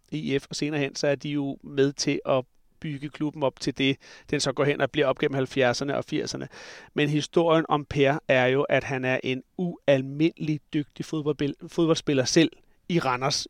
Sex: male